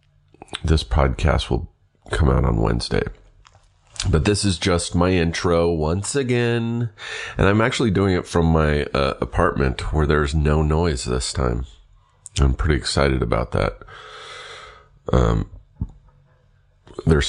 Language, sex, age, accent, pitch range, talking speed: English, male, 40-59, American, 70-100 Hz, 130 wpm